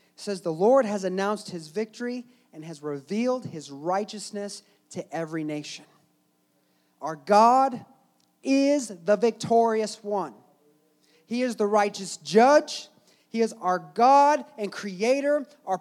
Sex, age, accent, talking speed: male, 30-49, American, 125 wpm